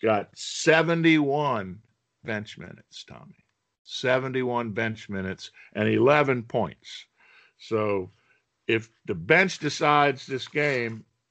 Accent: American